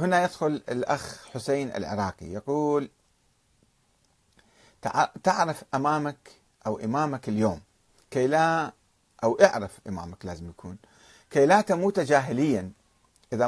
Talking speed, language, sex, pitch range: 100 wpm, Arabic, male, 110-155 Hz